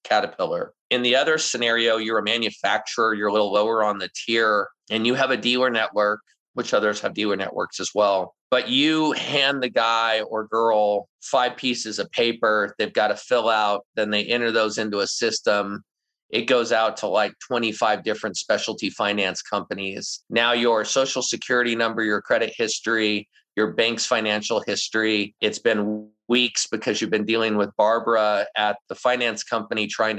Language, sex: English, male